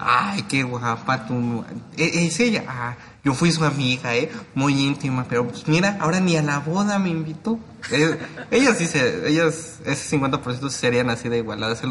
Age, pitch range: 30-49, 120-160 Hz